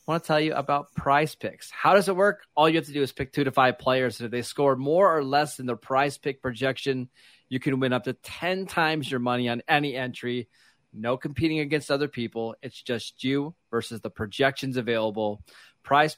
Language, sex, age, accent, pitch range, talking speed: English, male, 30-49, American, 120-145 Hz, 220 wpm